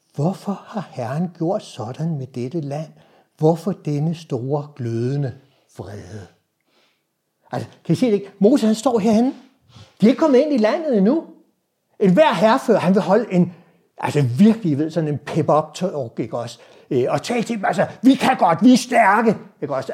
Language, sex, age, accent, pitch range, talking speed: Danish, male, 60-79, native, 145-215 Hz, 180 wpm